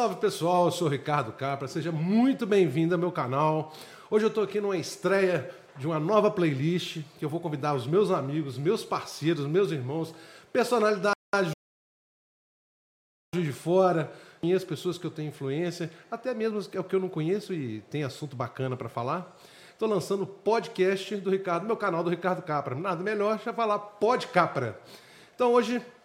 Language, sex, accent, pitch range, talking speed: Portuguese, male, Brazilian, 160-205 Hz, 180 wpm